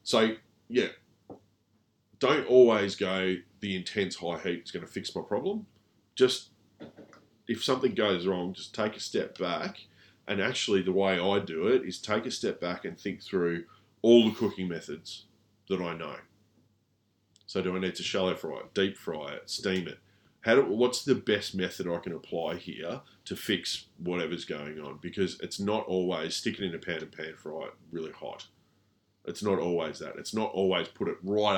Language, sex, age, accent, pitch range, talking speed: English, male, 30-49, Australian, 90-110 Hz, 185 wpm